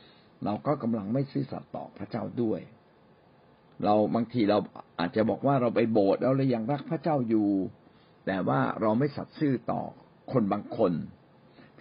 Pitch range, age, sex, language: 105-140 Hz, 60-79, male, Thai